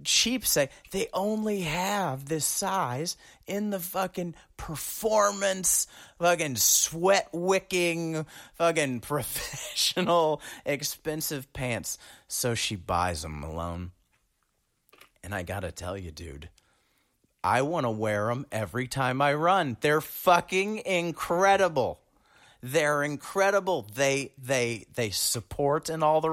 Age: 30-49